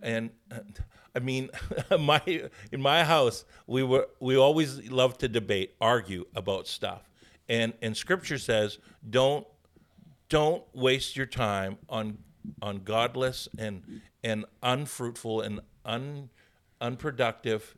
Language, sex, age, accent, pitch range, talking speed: English, male, 50-69, American, 110-130 Hz, 120 wpm